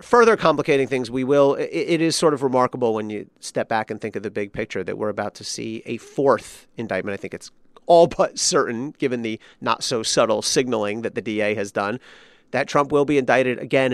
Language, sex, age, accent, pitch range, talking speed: English, male, 40-59, American, 125-175 Hz, 220 wpm